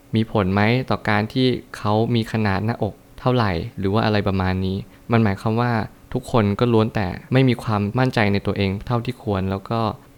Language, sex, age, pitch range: Thai, male, 20-39, 105-120 Hz